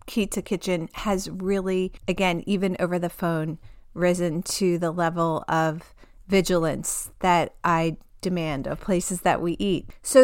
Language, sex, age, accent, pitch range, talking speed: English, female, 30-49, American, 175-215 Hz, 140 wpm